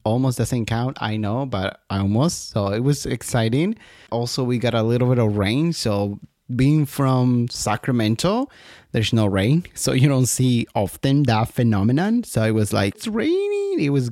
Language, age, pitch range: English, 30-49, 115-155 Hz